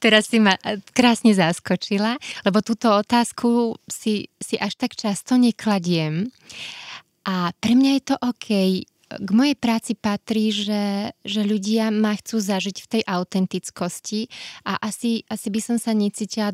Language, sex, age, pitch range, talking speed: Slovak, female, 20-39, 195-220 Hz, 145 wpm